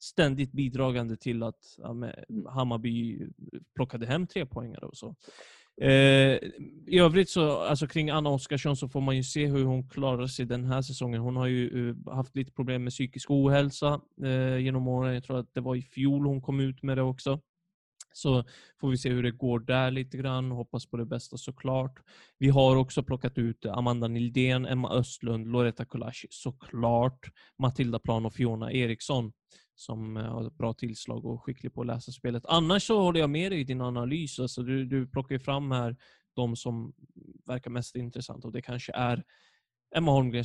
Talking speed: 180 wpm